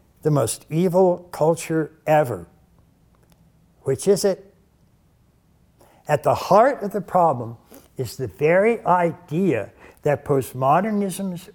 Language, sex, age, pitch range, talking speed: English, male, 60-79, 135-205 Hz, 105 wpm